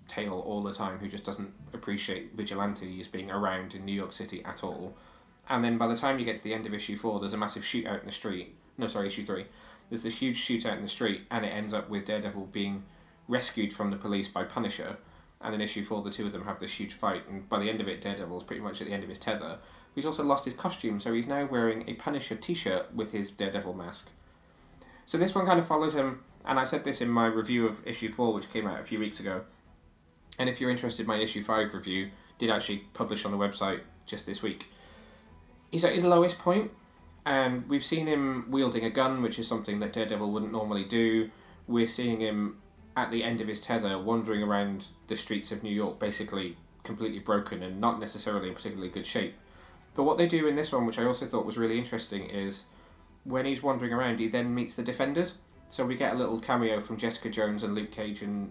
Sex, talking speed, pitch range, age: male, 235 wpm, 100-120 Hz, 20-39